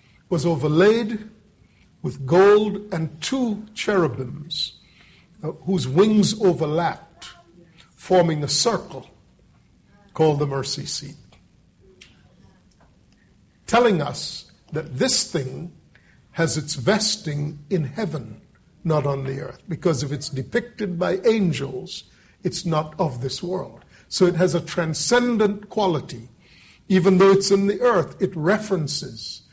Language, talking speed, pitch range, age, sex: English, 115 wpm, 150-190 Hz, 50-69, male